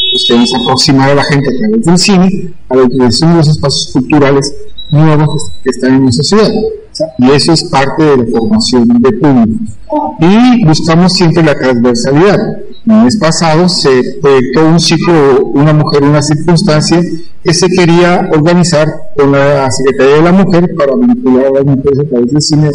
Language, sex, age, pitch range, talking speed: Spanish, male, 50-69, 130-175 Hz, 175 wpm